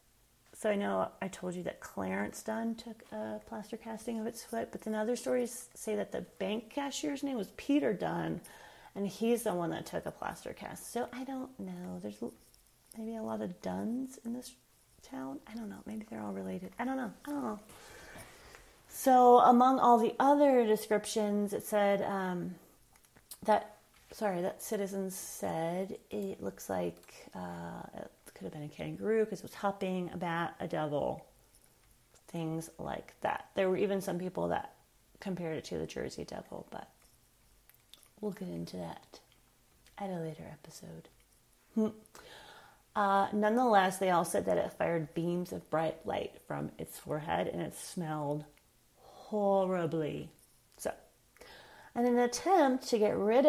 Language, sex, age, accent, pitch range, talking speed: English, female, 30-49, American, 170-235 Hz, 160 wpm